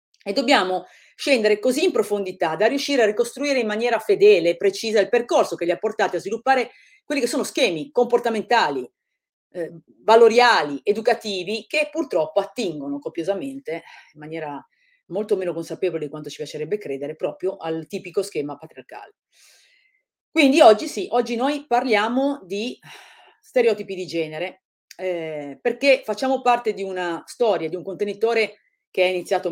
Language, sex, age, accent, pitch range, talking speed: Italian, female, 40-59, native, 160-240 Hz, 150 wpm